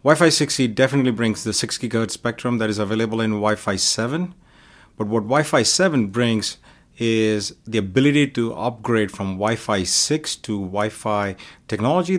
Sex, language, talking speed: male, English, 150 wpm